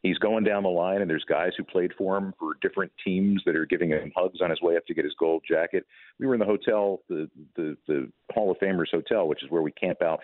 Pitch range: 85-120 Hz